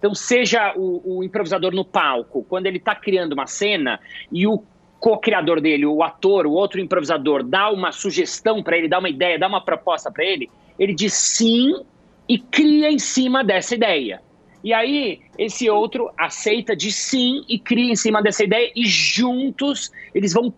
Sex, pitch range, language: male, 175-230 Hz, English